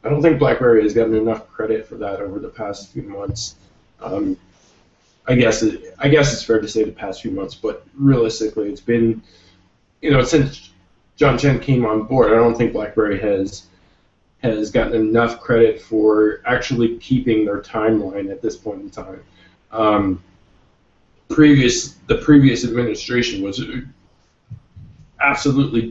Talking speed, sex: 155 wpm, male